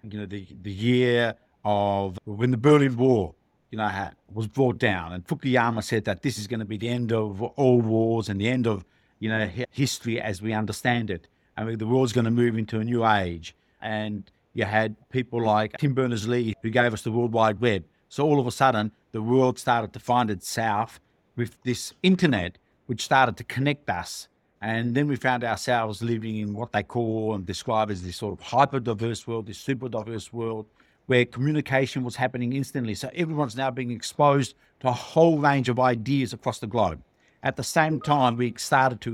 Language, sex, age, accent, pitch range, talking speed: English, male, 50-69, Australian, 110-135 Hz, 205 wpm